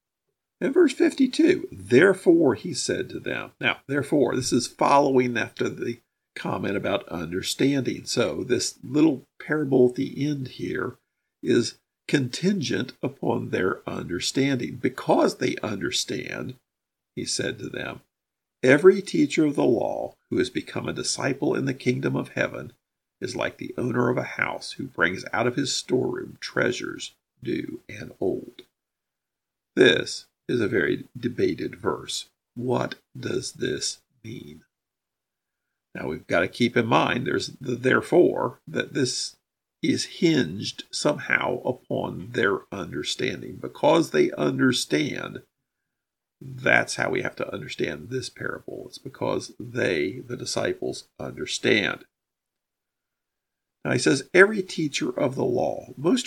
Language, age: English, 50-69